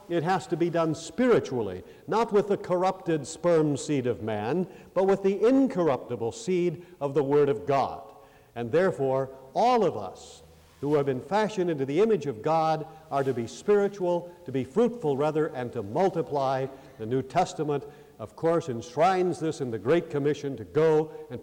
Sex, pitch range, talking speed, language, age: male, 140-185 Hz, 175 wpm, English, 50-69